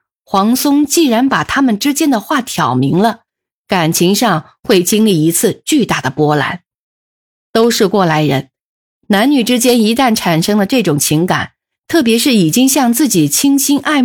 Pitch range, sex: 165-240 Hz, female